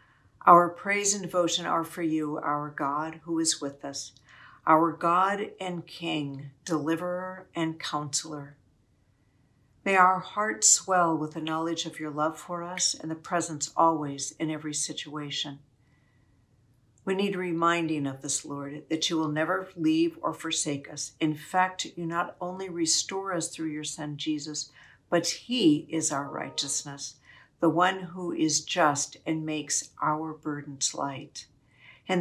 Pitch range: 145-170 Hz